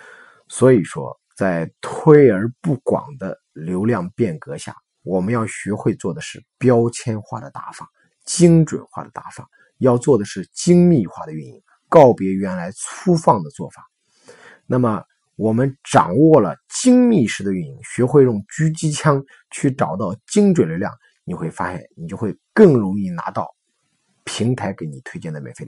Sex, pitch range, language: male, 110-160 Hz, Chinese